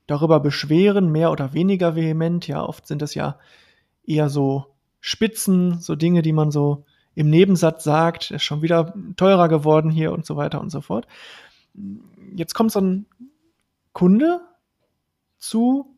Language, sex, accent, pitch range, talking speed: German, male, German, 160-195 Hz, 155 wpm